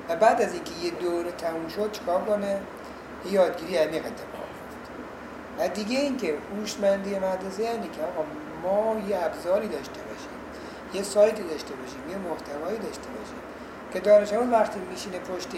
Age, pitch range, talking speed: 60-79, 160-210 Hz, 150 wpm